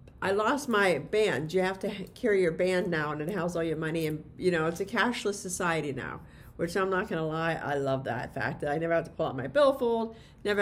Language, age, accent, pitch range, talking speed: English, 50-69, American, 165-230 Hz, 250 wpm